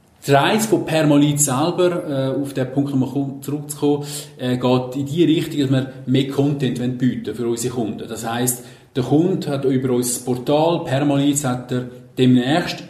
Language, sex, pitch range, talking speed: German, male, 125-145 Hz, 170 wpm